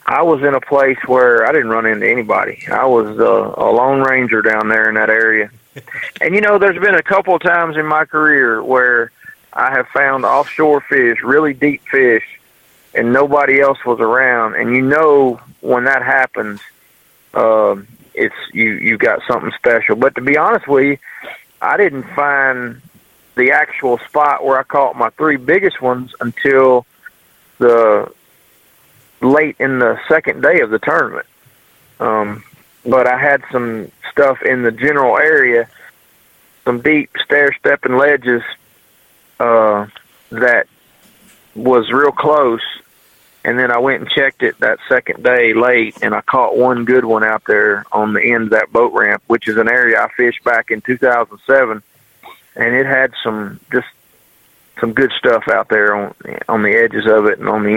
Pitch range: 115-145 Hz